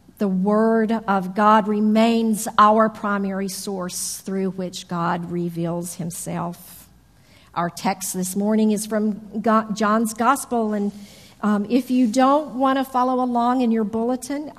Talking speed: 135 wpm